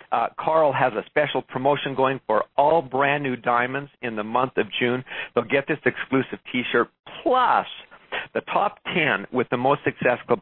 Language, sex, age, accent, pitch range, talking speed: English, male, 50-69, American, 115-140 Hz, 165 wpm